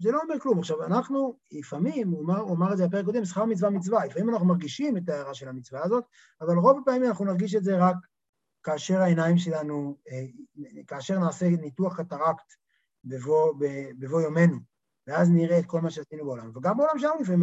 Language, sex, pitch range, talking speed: Hebrew, male, 165-230 Hz, 185 wpm